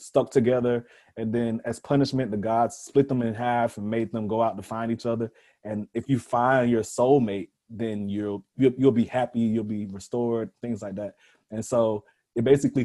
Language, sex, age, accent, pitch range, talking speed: English, male, 30-49, American, 105-125 Hz, 205 wpm